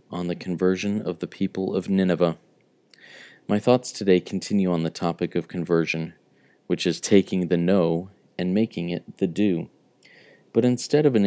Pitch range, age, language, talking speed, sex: 85-105 Hz, 40-59, English, 165 wpm, male